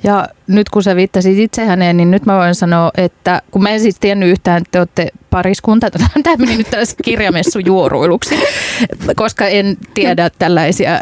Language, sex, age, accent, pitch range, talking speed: Finnish, female, 30-49, native, 180-225 Hz, 180 wpm